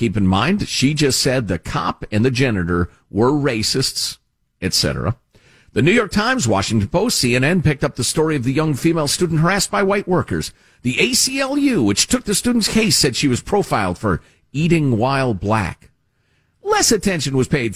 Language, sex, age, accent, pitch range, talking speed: English, male, 50-69, American, 120-195 Hz, 180 wpm